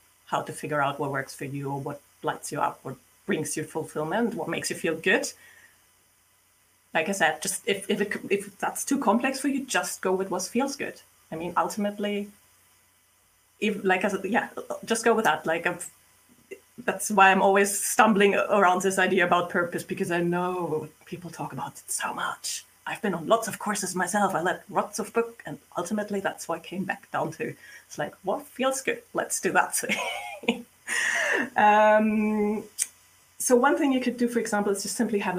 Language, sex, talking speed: English, female, 195 wpm